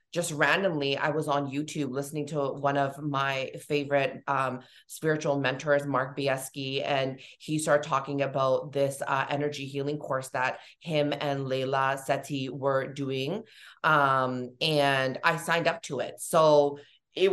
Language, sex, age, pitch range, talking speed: English, female, 20-39, 140-155 Hz, 150 wpm